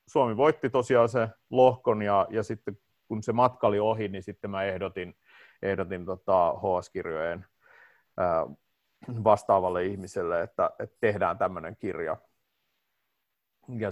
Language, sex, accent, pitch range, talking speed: Finnish, male, native, 100-130 Hz, 120 wpm